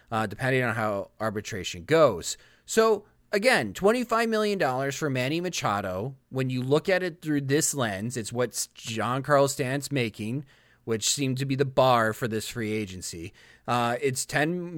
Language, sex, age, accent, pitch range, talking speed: English, male, 30-49, American, 115-150 Hz, 160 wpm